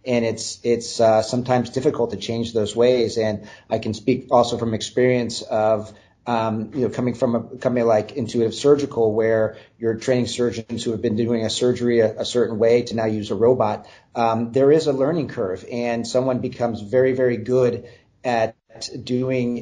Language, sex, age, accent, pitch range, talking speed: English, male, 40-59, American, 110-125 Hz, 185 wpm